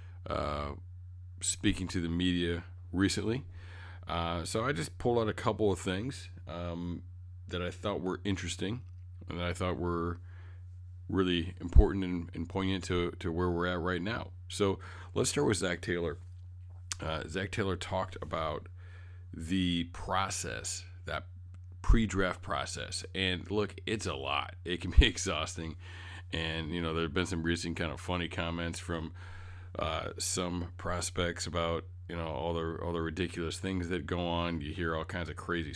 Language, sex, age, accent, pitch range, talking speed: English, male, 40-59, American, 85-95 Hz, 165 wpm